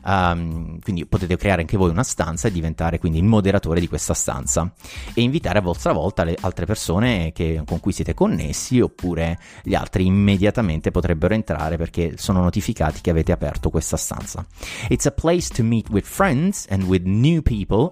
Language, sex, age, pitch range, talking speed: Italian, male, 30-49, 85-110 Hz, 175 wpm